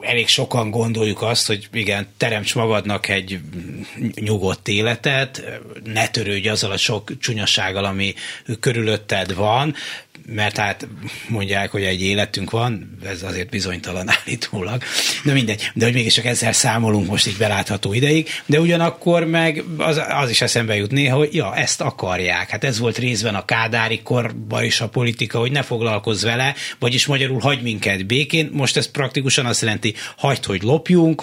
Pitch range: 100-130 Hz